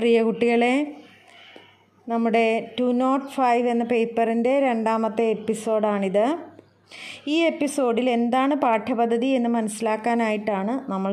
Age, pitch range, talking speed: 20-39, 225-270 Hz, 90 wpm